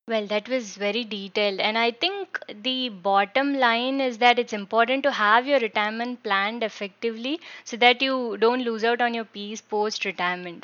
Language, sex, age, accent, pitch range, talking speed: English, female, 20-39, Indian, 205-255 Hz, 175 wpm